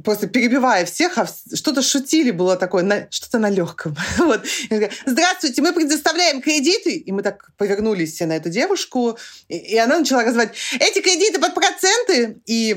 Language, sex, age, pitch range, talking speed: Russian, female, 30-49, 195-270 Hz, 165 wpm